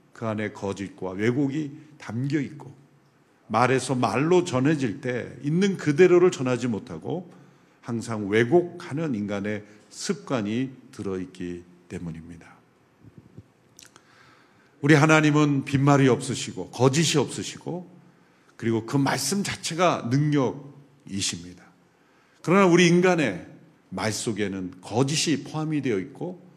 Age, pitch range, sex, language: 50-69, 115-170 Hz, male, Korean